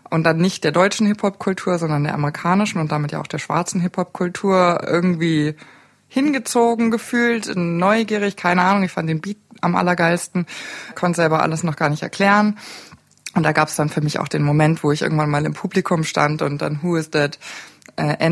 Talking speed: 190 wpm